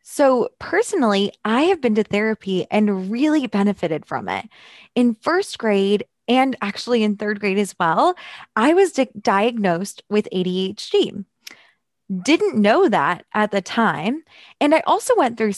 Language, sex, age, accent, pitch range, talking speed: English, female, 20-39, American, 190-240 Hz, 145 wpm